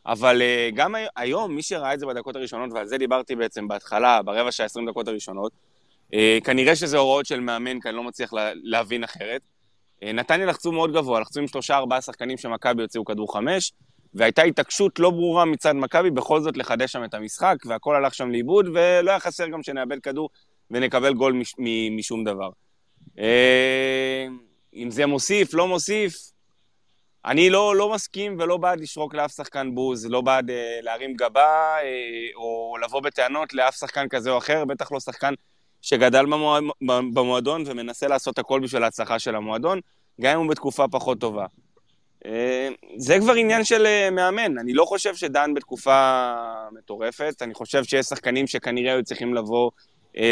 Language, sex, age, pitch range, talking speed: Hebrew, male, 20-39, 120-150 Hz, 155 wpm